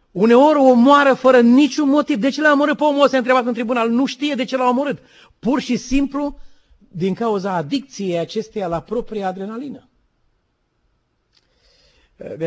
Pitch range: 205-265 Hz